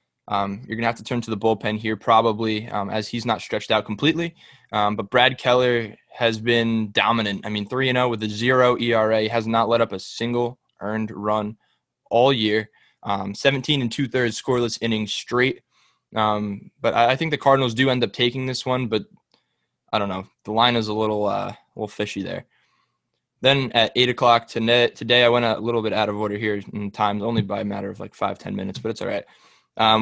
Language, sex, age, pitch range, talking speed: English, male, 20-39, 105-120 Hz, 225 wpm